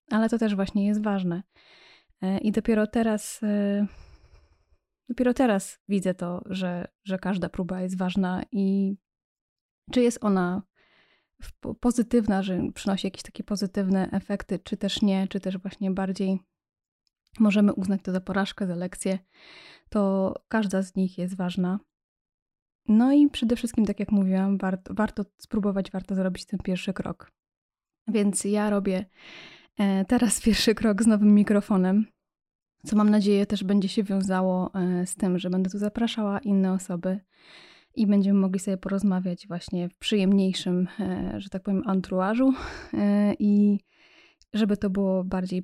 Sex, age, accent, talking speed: female, 20-39, native, 140 wpm